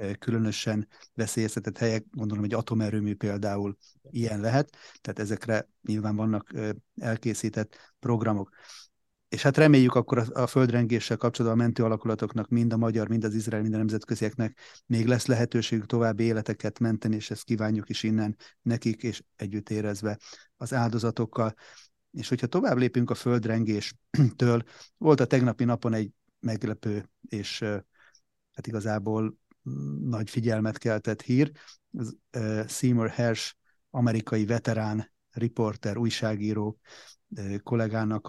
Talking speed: 125 wpm